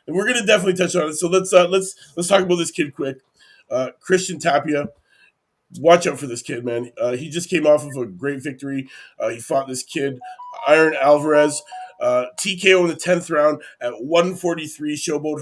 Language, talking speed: English, 200 wpm